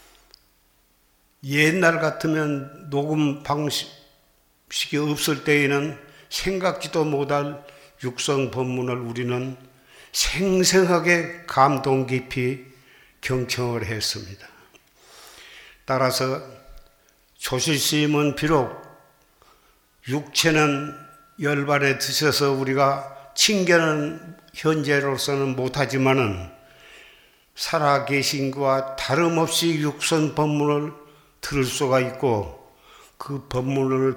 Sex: male